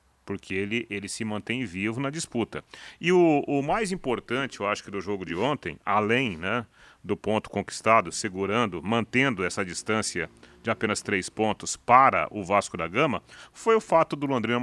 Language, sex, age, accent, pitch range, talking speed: Portuguese, male, 40-59, Brazilian, 105-130 Hz, 175 wpm